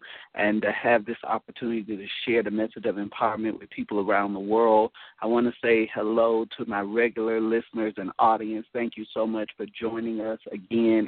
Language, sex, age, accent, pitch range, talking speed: English, male, 40-59, American, 105-115 Hz, 190 wpm